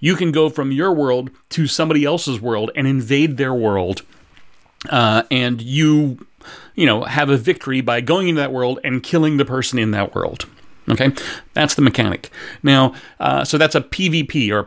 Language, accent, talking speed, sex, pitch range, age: English, American, 185 wpm, male, 125-155 Hz, 40-59